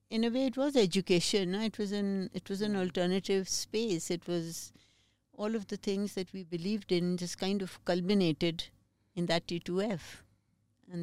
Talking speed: 175 wpm